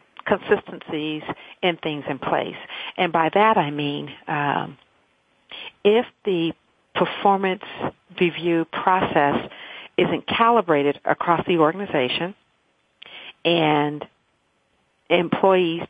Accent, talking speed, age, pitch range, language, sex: American, 90 wpm, 50-69, 155-180 Hz, English, female